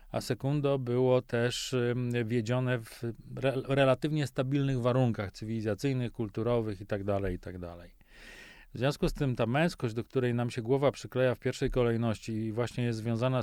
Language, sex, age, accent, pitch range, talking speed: Polish, male, 40-59, native, 115-130 Hz, 145 wpm